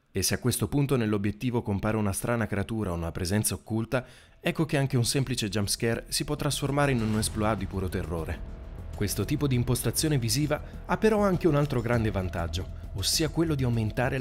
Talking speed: 190 wpm